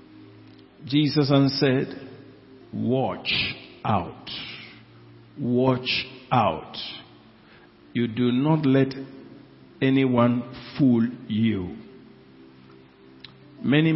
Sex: male